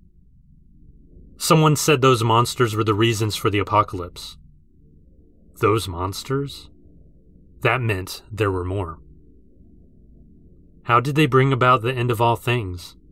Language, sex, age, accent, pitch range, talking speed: English, male, 30-49, American, 85-120 Hz, 125 wpm